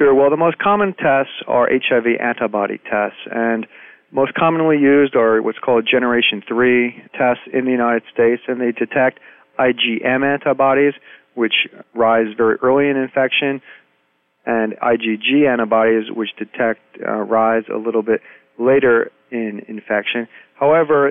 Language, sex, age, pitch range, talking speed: English, male, 40-59, 110-130 Hz, 135 wpm